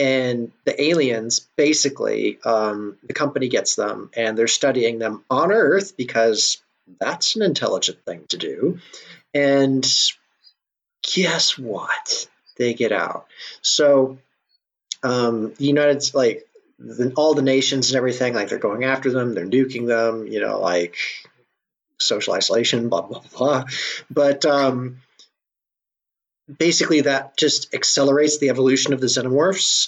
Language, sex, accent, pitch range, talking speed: English, male, American, 120-145 Hz, 140 wpm